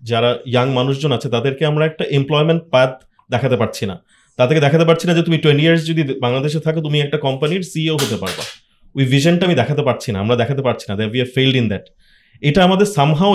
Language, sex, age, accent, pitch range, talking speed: Bengali, male, 30-49, native, 125-160 Hz, 205 wpm